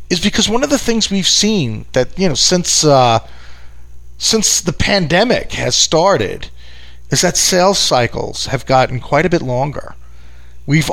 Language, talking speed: English, 160 wpm